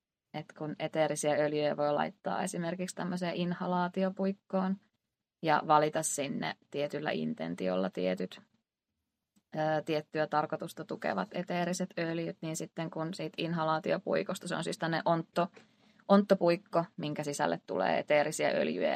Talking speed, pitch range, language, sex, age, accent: 115 wpm, 155-185 Hz, Finnish, female, 20-39, native